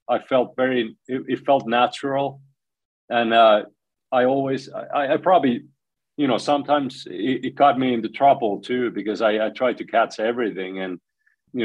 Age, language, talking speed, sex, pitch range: 30-49, English, 170 wpm, male, 100-120 Hz